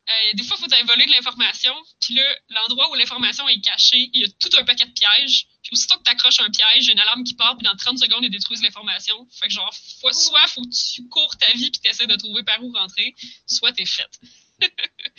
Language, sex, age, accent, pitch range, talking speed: French, female, 20-39, Canadian, 200-255 Hz, 255 wpm